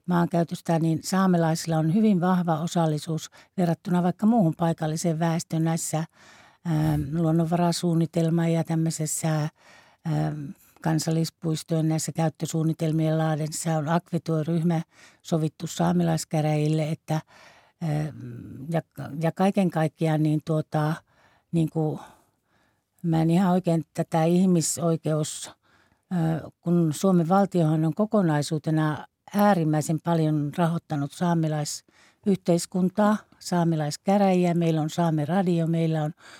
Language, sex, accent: Finnish, female, native